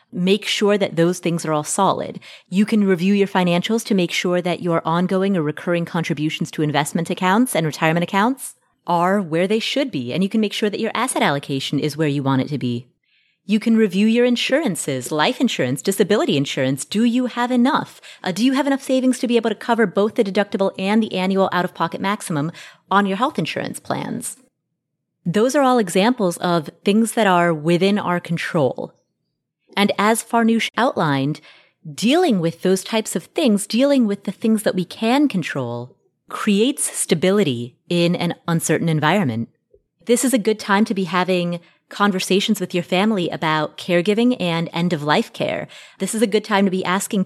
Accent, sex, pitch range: American, female, 170-220 Hz